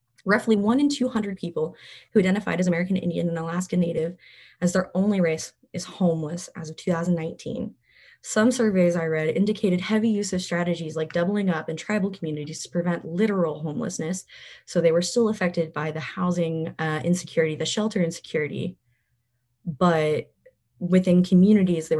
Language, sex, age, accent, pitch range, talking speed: English, female, 20-39, American, 160-185 Hz, 160 wpm